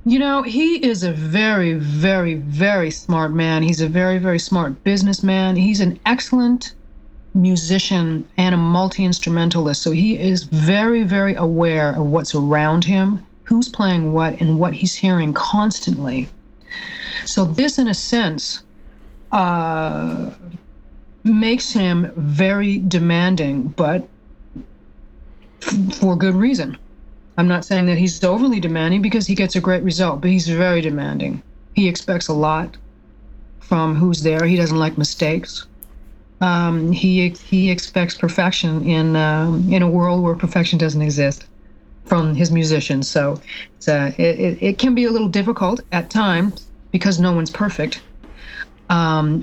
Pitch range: 160-195 Hz